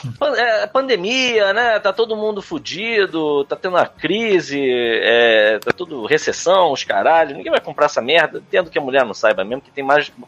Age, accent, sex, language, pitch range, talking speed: 20-39, Brazilian, male, Portuguese, 140-190 Hz, 200 wpm